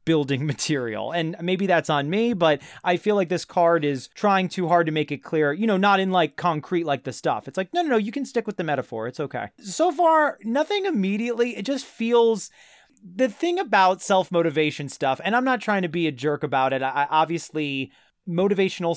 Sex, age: male, 30-49